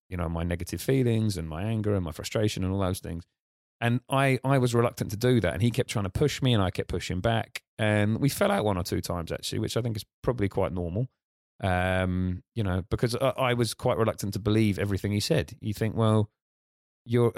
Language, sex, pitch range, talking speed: English, male, 95-115 Hz, 240 wpm